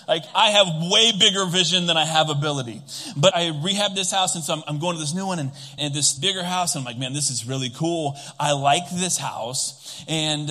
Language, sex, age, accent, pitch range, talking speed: English, male, 30-49, American, 135-180 Hz, 240 wpm